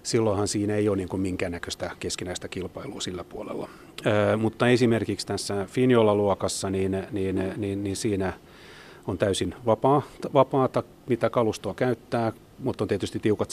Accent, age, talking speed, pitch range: native, 30-49, 140 wpm, 95-115 Hz